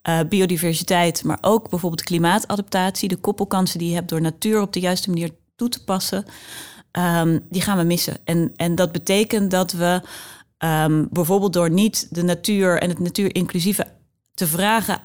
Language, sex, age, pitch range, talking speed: Dutch, female, 30-49, 165-195 Hz, 160 wpm